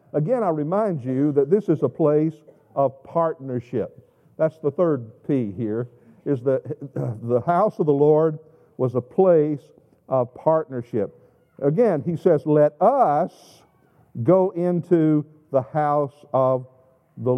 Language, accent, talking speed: English, American, 135 wpm